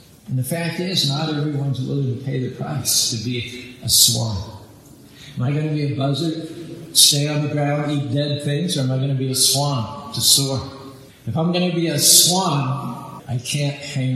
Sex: male